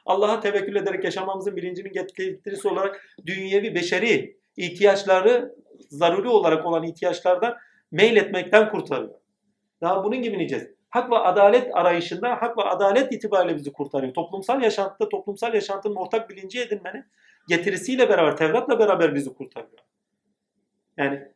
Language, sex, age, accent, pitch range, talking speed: Turkish, male, 40-59, native, 175-235 Hz, 125 wpm